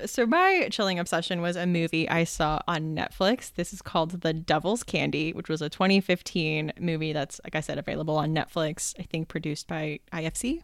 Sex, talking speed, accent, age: female, 190 wpm, American, 20-39